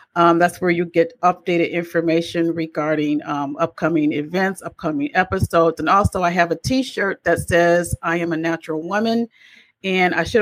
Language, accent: English, American